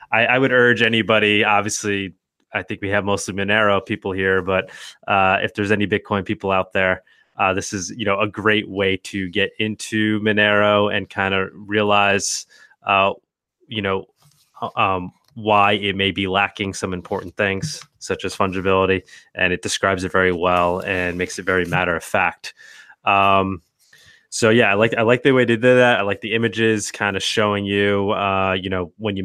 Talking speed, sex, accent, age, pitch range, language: 185 wpm, male, American, 20-39, 95-105 Hz, English